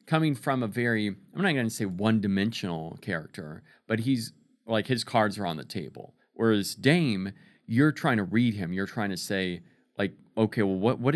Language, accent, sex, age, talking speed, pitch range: English, American, male, 40-59, 195 wpm, 95-135 Hz